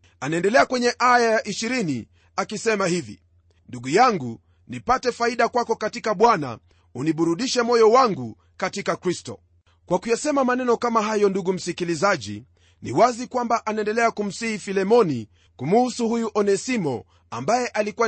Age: 40-59